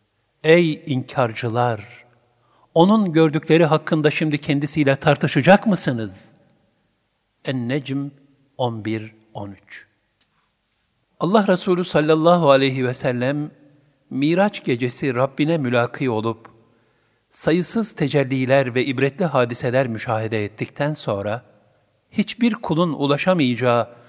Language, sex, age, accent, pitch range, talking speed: Turkish, male, 50-69, native, 120-155 Hz, 80 wpm